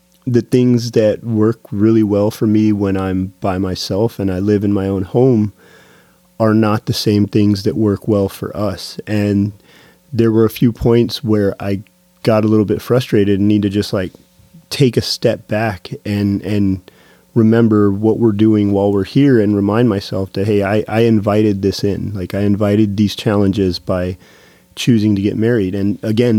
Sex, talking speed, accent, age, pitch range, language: male, 185 wpm, American, 30-49, 100-115 Hz, English